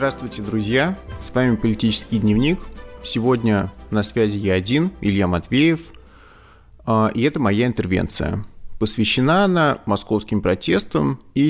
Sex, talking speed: male, 115 wpm